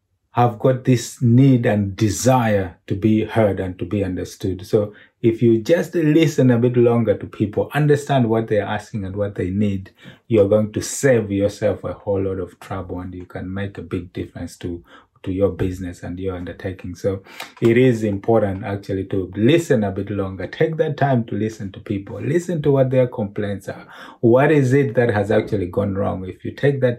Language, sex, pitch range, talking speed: English, male, 100-125 Hz, 200 wpm